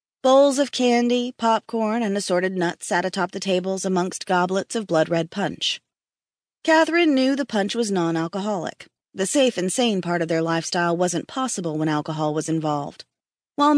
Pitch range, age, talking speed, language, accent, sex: 175-235 Hz, 30-49, 160 wpm, English, American, female